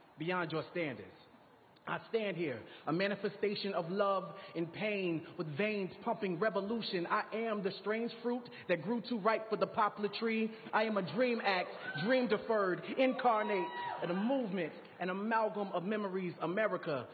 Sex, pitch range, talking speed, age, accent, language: male, 180-220 Hz, 160 wpm, 30-49, American, English